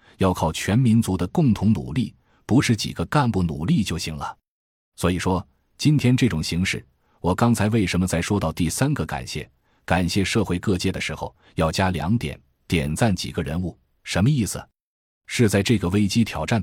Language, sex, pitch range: Chinese, male, 85-110 Hz